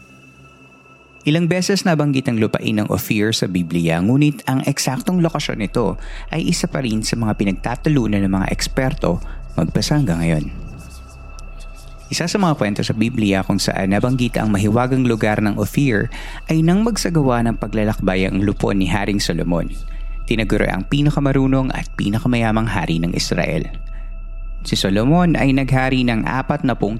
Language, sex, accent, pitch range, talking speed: Filipino, male, native, 100-135 Hz, 145 wpm